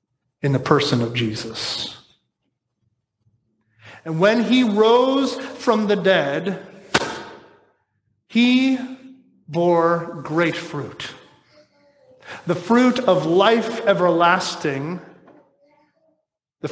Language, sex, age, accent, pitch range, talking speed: English, male, 40-59, American, 160-235 Hz, 80 wpm